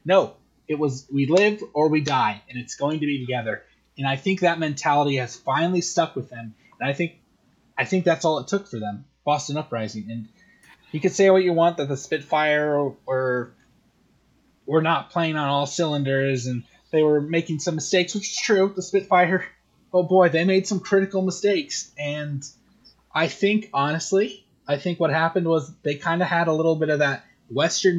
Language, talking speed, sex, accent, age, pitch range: English, 195 wpm, male, American, 20-39, 135-175 Hz